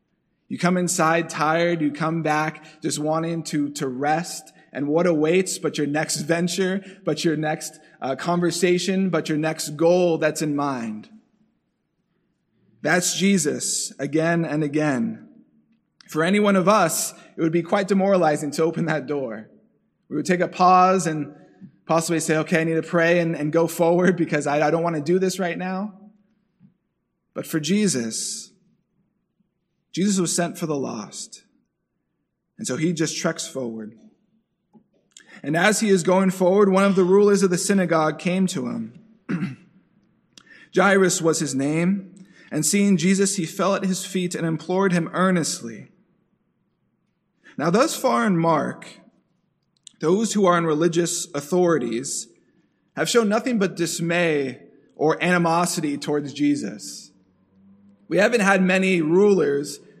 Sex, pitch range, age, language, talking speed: male, 155-190 Hz, 20-39, English, 150 wpm